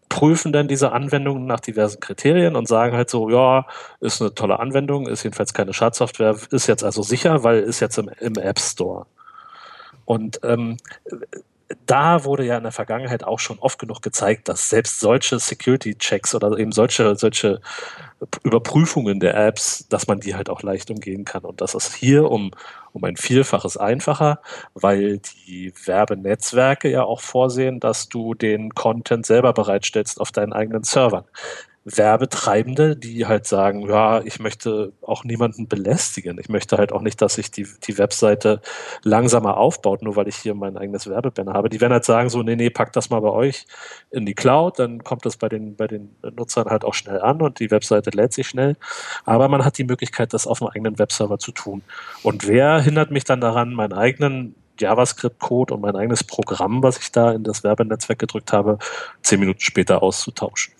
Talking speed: 185 wpm